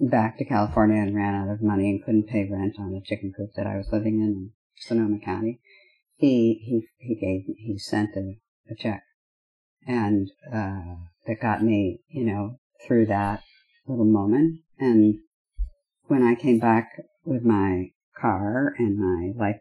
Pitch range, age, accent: 100-135 Hz, 50-69, American